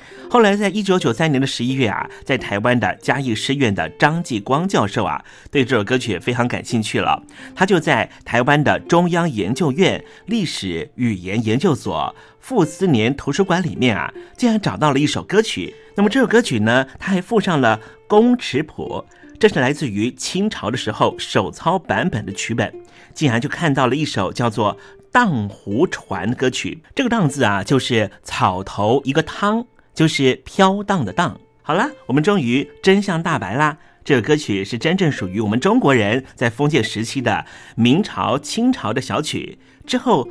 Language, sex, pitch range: Chinese, male, 115-185 Hz